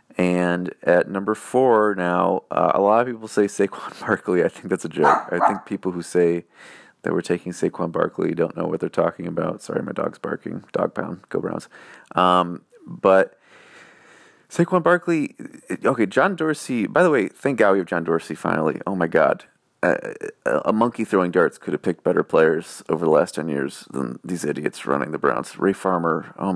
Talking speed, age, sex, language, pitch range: 190 wpm, 30-49, male, English, 90-115 Hz